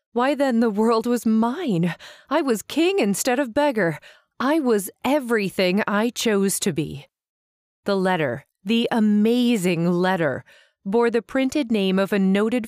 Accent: American